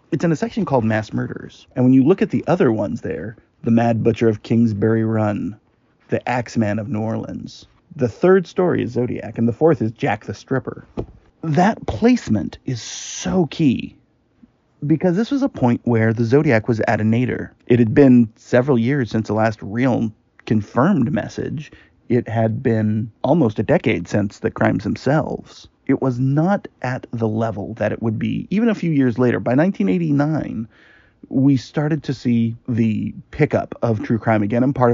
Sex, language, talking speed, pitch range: male, English, 180 wpm, 110-140 Hz